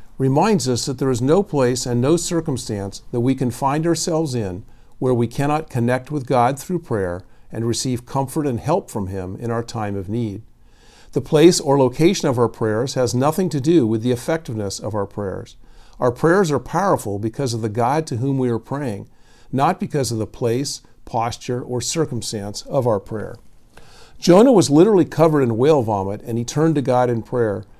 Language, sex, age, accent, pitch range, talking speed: English, male, 50-69, American, 115-150 Hz, 195 wpm